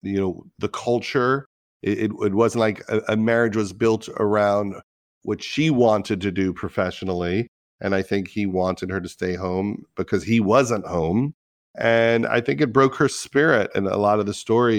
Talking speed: 185 wpm